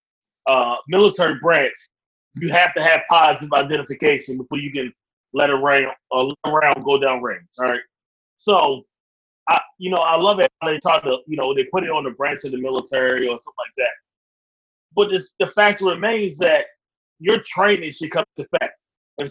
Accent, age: American, 30-49